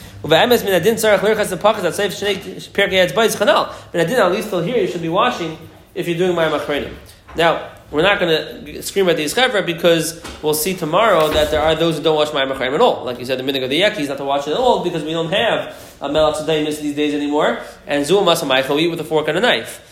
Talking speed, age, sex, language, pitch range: 210 wpm, 20-39, male, English, 145-190 Hz